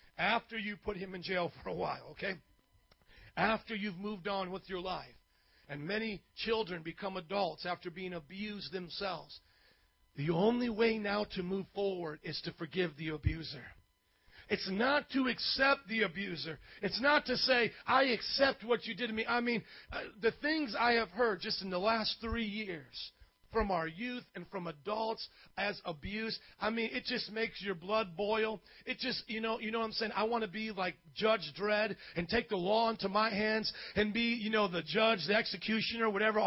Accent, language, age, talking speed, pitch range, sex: American, English, 40-59, 190 wpm, 190-230 Hz, male